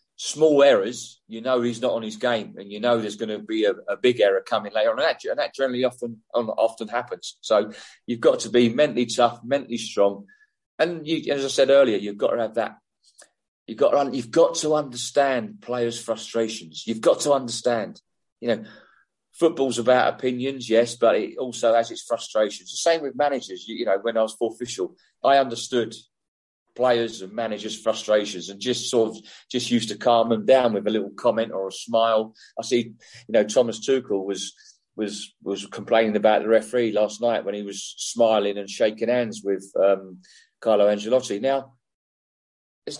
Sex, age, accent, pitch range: male, 40-59, British, 110-135 Hz